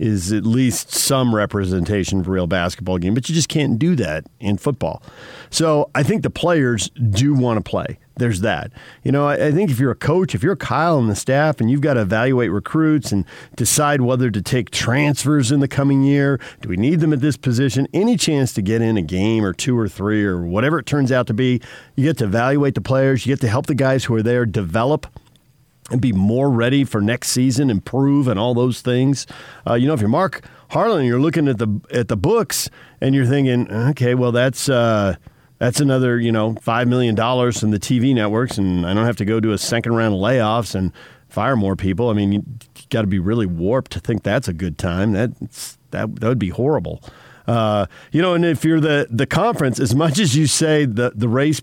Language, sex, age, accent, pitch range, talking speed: English, male, 50-69, American, 105-140 Hz, 230 wpm